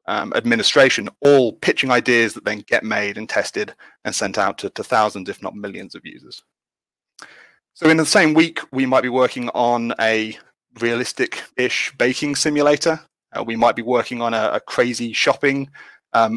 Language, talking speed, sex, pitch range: English, 175 wpm, male, 115-140 Hz